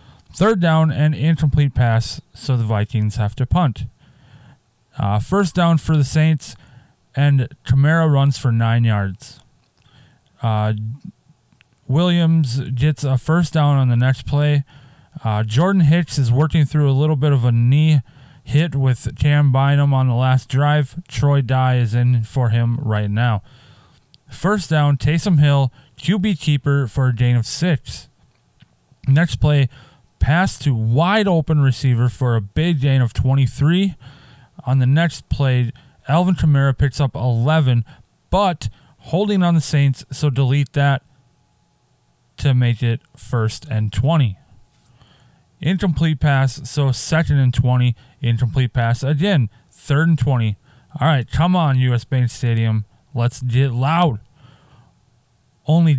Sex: male